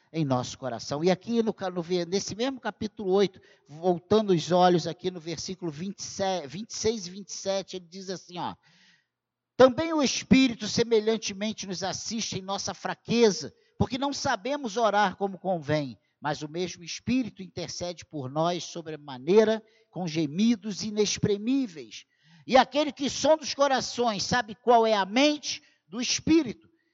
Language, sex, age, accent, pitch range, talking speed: Portuguese, male, 50-69, Brazilian, 175-270 Hz, 145 wpm